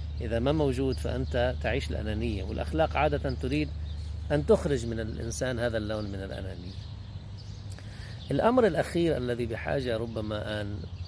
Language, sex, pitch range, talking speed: Arabic, male, 80-115 Hz, 130 wpm